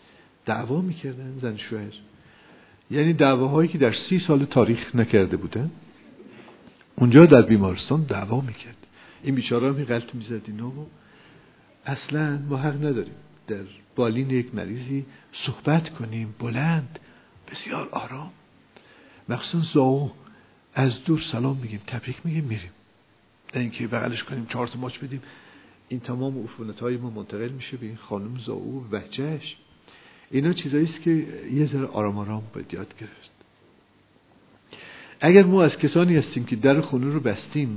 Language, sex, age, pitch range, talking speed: Persian, male, 50-69, 110-145 Hz, 135 wpm